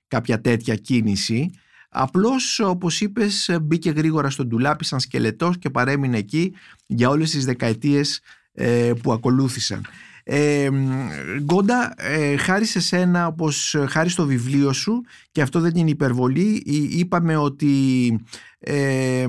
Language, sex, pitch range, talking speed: Greek, male, 130-180 Hz, 120 wpm